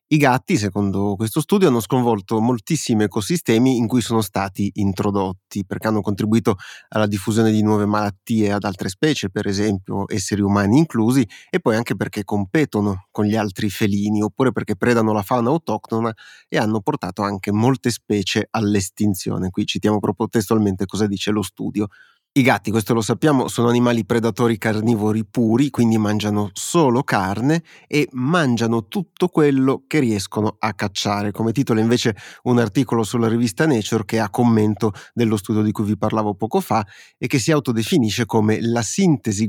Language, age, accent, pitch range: Italian, 30-49, native, 105-125 Hz